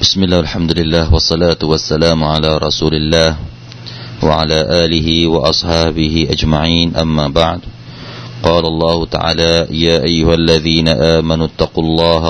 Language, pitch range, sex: Thai, 75-85 Hz, male